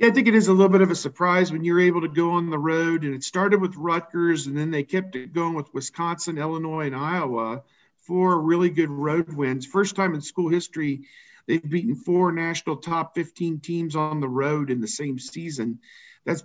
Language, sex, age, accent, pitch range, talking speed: English, male, 50-69, American, 155-185 Hz, 215 wpm